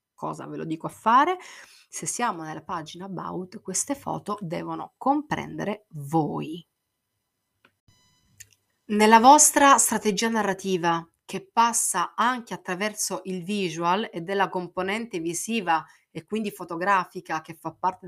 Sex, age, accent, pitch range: female, 30-49, native, 165-210 Hz